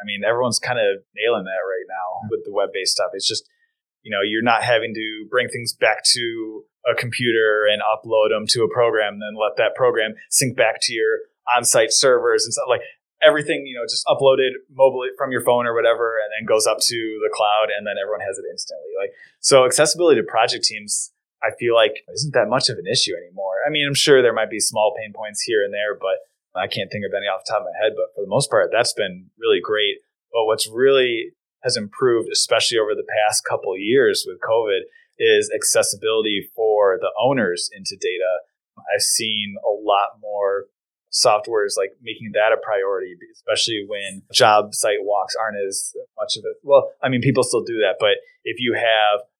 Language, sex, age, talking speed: English, male, 20-39, 210 wpm